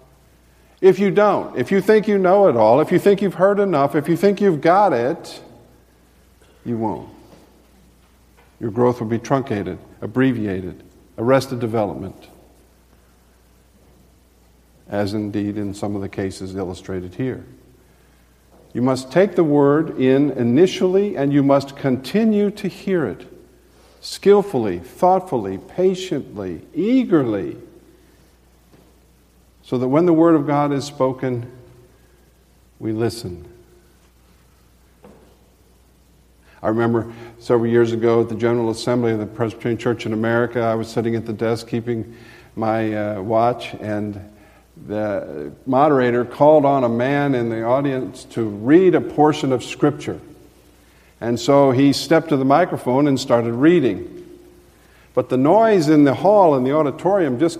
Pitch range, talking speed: 95-145 Hz, 135 wpm